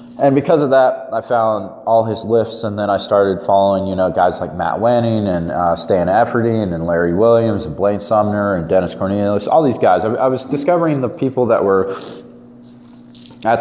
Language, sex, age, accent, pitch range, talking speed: English, male, 20-39, American, 100-125 Hz, 200 wpm